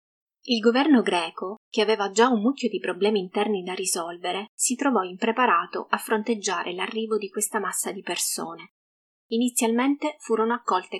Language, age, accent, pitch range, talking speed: Italian, 20-39, native, 190-225 Hz, 145 wpm